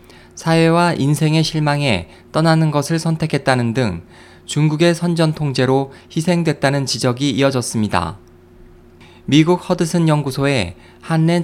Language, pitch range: Korean, 120-155 Hz